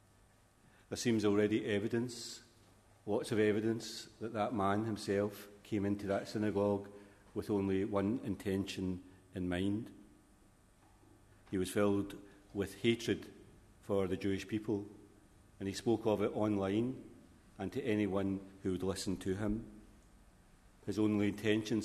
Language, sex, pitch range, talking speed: English, male, 95-105 Hz, 130 wpm